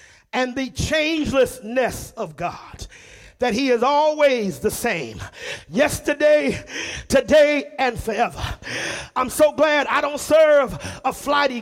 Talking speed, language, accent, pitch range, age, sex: 120 wpm, English, American, 270-320 Hz, 40-59, male